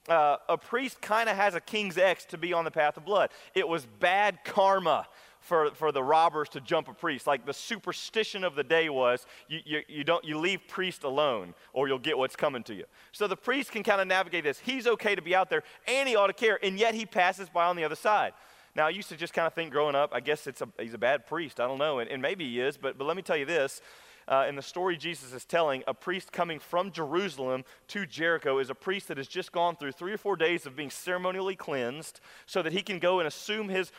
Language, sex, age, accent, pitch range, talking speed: English, male, 30-49, American, 155-205 Hz, 265 wpm